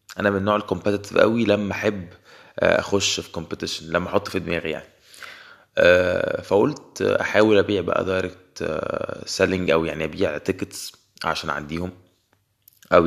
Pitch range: 85-105 Hz